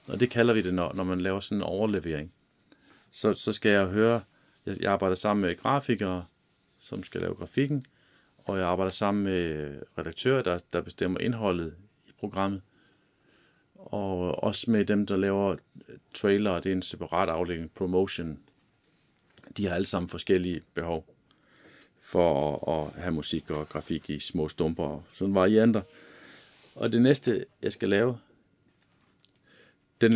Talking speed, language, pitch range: 155 wpm, Danish, 85-110 Hz